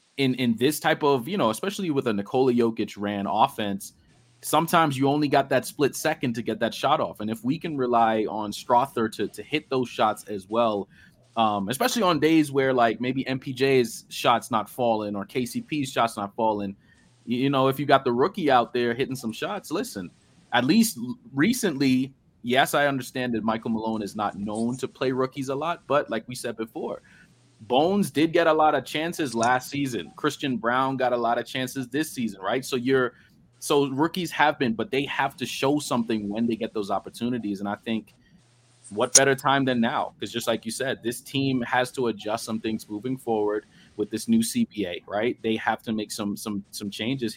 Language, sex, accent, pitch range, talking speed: English, male, American, 110-140 Hz, 205 wpm